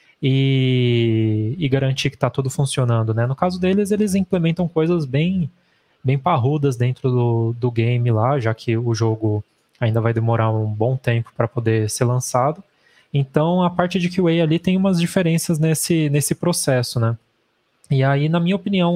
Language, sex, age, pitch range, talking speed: Portuguese, male, 20-39, 125-165 Hz, 175 wpm